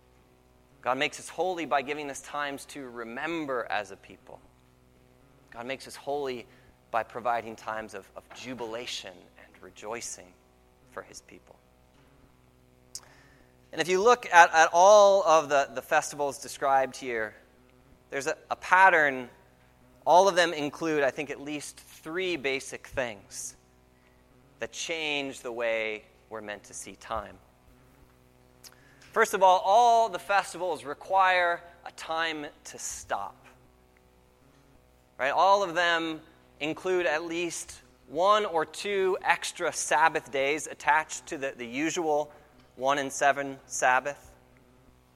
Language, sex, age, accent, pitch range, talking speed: English, male, 30-49, American, 110-170 Hz, 130 wpm